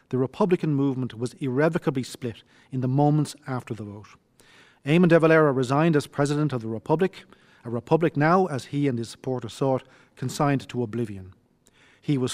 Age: 40-59